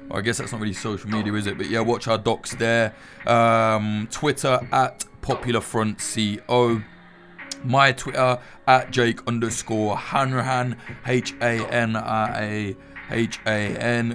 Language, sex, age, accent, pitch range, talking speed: English, male, 20-39, British, 110-125 Hz, 110 wpm